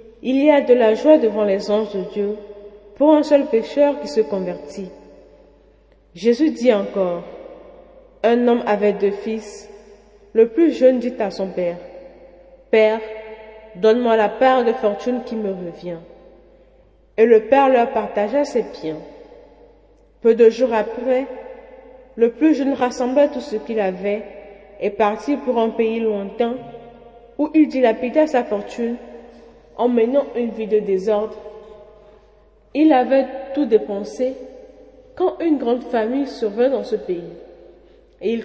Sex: female